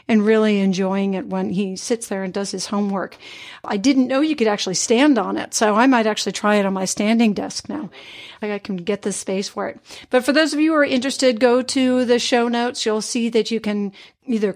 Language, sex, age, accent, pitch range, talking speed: English, female, 50-69, American, 205-250 Hz, 240 wpm